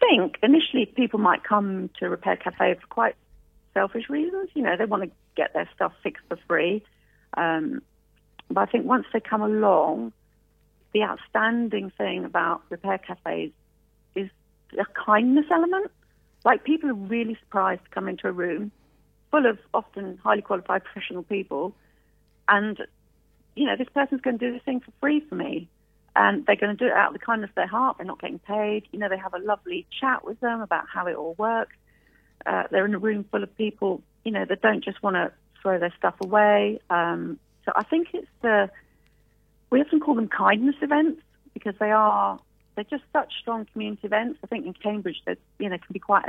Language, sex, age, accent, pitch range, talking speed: English, female, 40-59, British, 190-260 Hz, 200 wpm